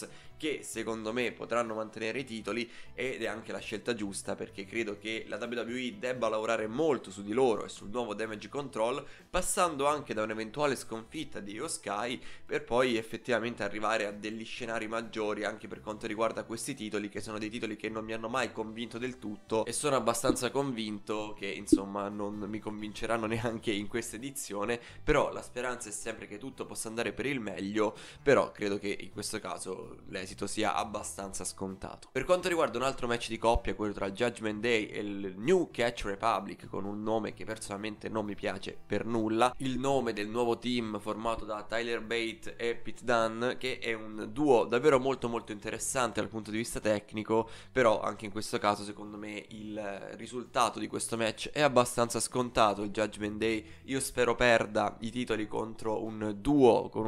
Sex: male